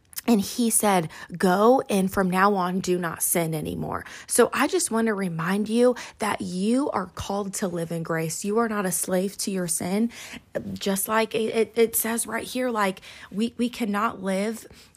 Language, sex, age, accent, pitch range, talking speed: English, female, 20-39, American, 180-220 Hz, 190 wpm